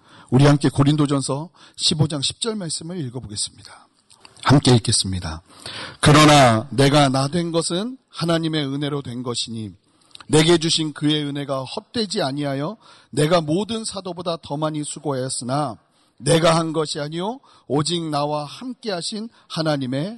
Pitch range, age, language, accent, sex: 125-170 Hz, 40-59, Korean, native, male